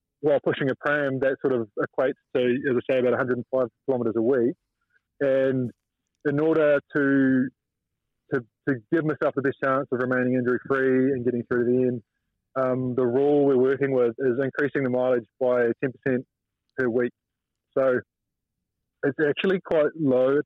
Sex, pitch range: male, 120-140 Hz